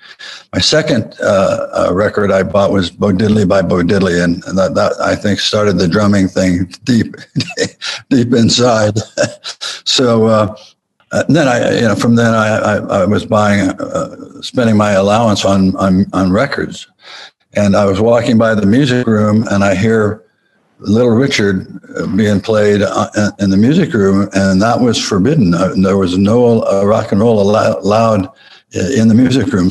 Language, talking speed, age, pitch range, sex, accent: English, 165 wpm, 60-79, 100-115 Hz, male, American